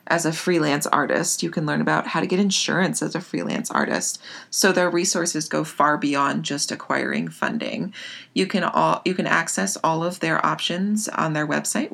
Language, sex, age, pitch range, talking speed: English, female, 30-49, 150-190 Hz, 180 wpm